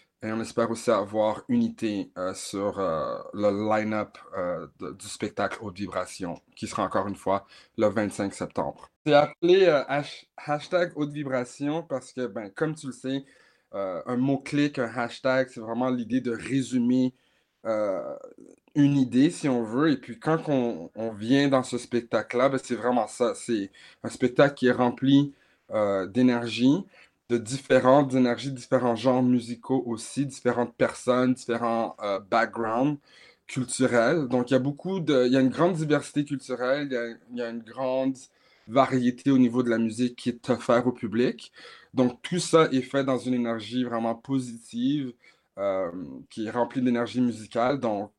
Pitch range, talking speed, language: 115-135 Hz, 170 wpm, English